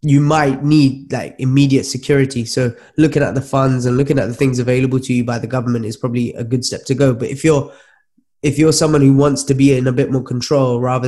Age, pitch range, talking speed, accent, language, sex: 20-39, 125-145 Hz, 245 wpm, British, English, male